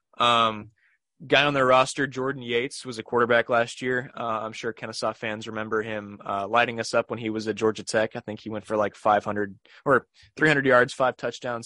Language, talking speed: English, 210 wpm